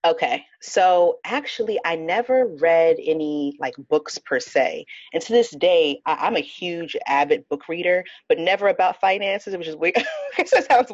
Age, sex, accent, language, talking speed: 30-49, female, American, English, 165 wpm